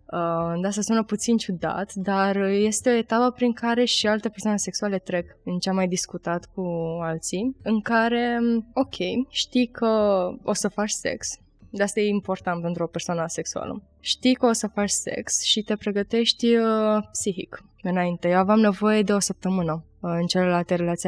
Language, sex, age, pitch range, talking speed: Romanian, female, 20-39, 185-235 Hz, 175 wpm